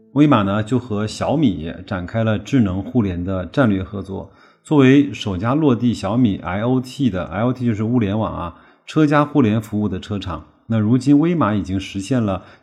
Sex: male